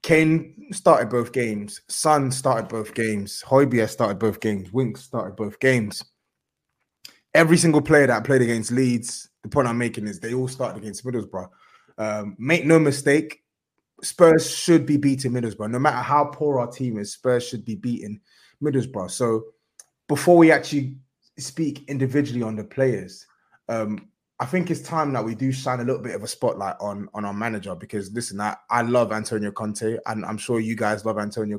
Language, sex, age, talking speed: English, male, 20-39, 180 wpm